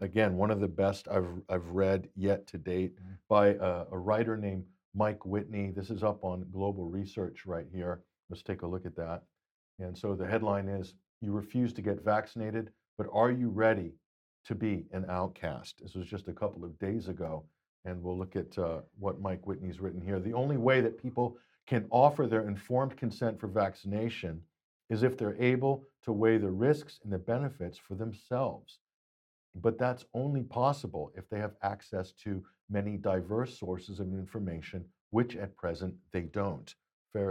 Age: 50-69